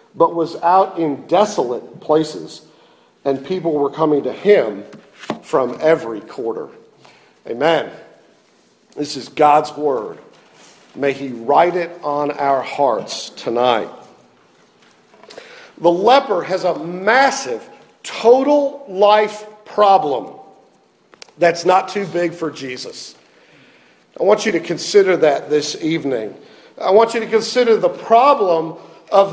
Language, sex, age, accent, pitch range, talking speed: English, male, 50-69, American, 165-255 Hz, 120 wpm